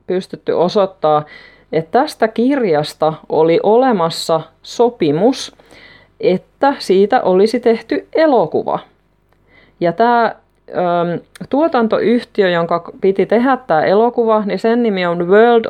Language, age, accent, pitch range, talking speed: Finnish, 30-49, native, 160-235 Hz, 100 wpm